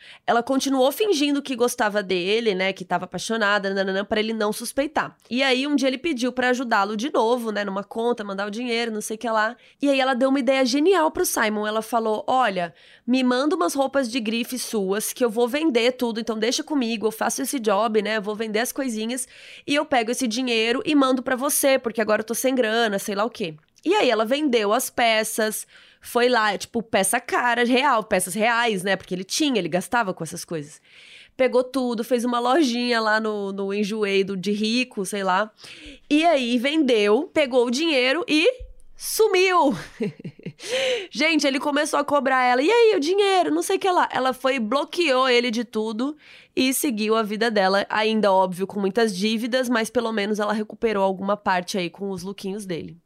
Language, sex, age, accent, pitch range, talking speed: Portuguese, female, 20-39, Brazilian, 215-270 Hz, 200 wpm